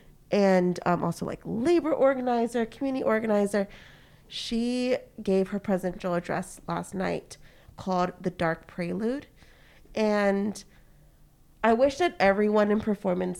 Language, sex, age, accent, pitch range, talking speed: English, female, 20-39, American, 185-225 Hz, 115 wpm